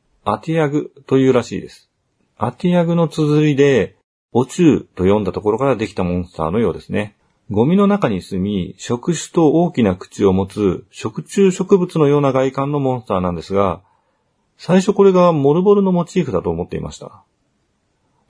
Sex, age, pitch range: male, 40-59, 100-165 Hz